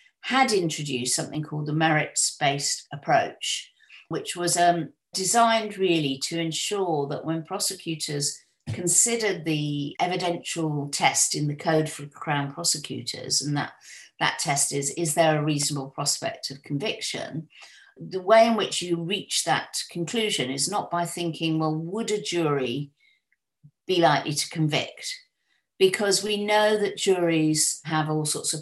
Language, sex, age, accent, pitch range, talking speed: English, female, 50-69, British, 145-180 Hz, 145 wpm